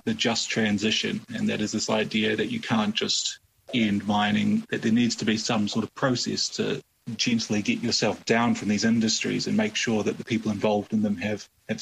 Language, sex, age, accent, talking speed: English, male, 30-49, Australian, 215 wpm